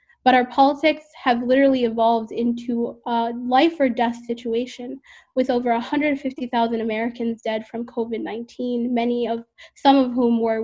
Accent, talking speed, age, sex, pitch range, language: American, 140 wpm, 10-29, female, 230-250 Hz, English